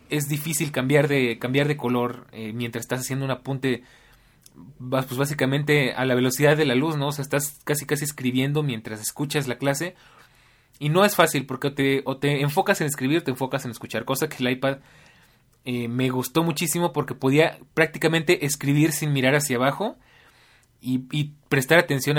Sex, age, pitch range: male, 20-39, 125-150 Hz